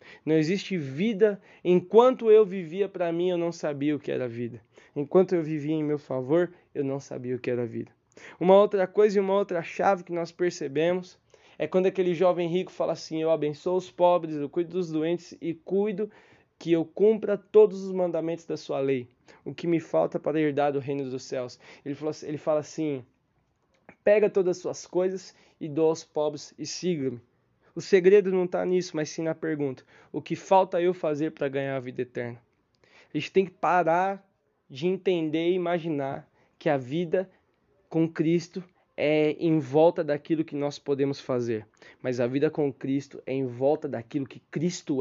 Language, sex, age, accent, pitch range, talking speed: Portuguese, male, 20-39, Brazilian, 145-180 Hz, 190 wpm